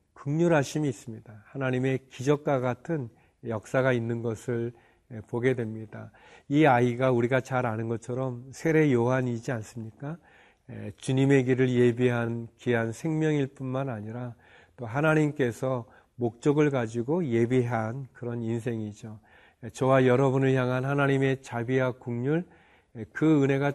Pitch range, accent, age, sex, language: 115-135 Hz, native, 40-59, male, Korean